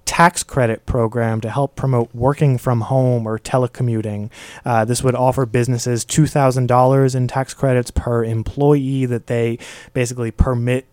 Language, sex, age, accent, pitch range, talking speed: English, male, 20-39, American, 115-135 Hz, 145 wpm